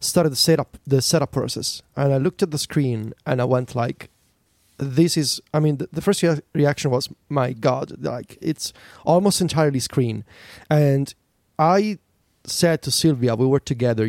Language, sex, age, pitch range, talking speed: English, male, 30-49, 125-160 Hz, 175 wpm